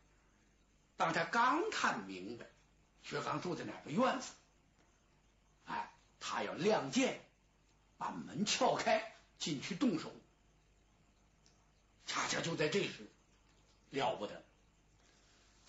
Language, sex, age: Chinese, male, 60-79